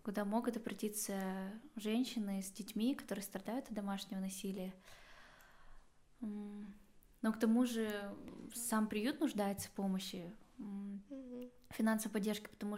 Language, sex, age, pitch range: Russian, female, 10-29, 195-225 Hz